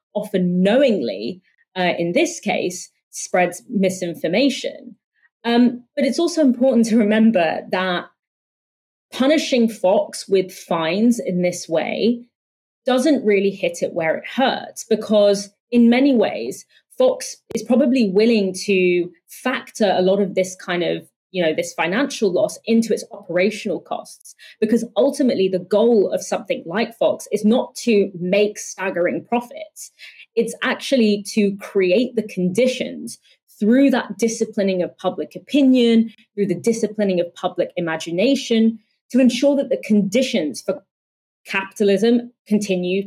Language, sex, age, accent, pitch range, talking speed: English, female, 30-49, British, 190-235 Hz, 130 wpm